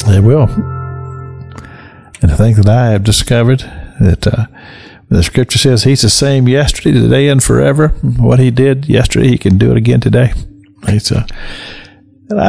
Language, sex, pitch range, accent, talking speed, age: English, male, 110-140 Hz, American, 155 wpm, 50-69